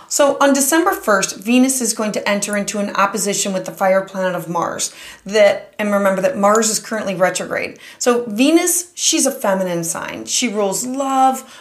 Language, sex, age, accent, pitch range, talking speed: English, female, 30-49, American, 195-240 Hz, 180 wpm